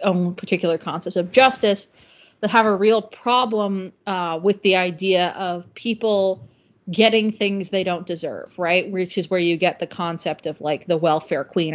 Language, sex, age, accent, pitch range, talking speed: English, female, 30-49, American, 170-210 Hz, 175 wpm